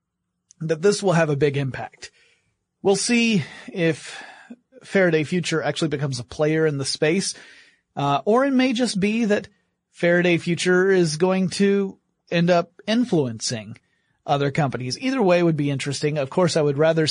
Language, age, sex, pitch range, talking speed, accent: English, 30-49, male, 145-180 Hz, 160 wpm, American